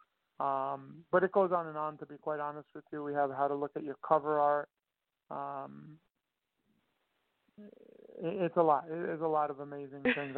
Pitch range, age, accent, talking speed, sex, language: 150-175 Hz, 40-59, American, 195 wpm, male, English